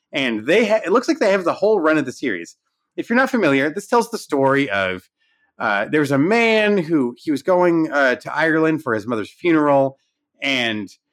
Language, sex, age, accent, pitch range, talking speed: English, male, 30-49, American, 130-185 Hz, 215 wpm